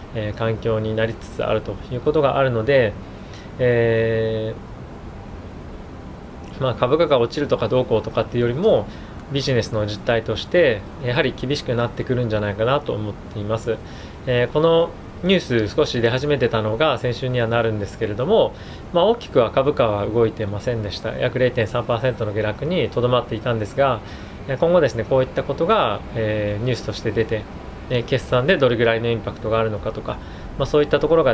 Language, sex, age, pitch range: Japanese, male, 20-39, 105-125 Hz